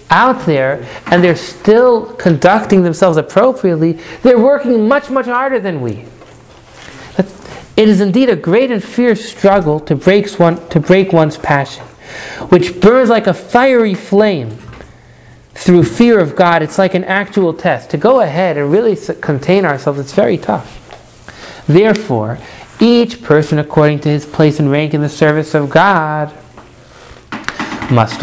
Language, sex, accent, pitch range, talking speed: English, male, American, 145-195 Hz, 145 wpm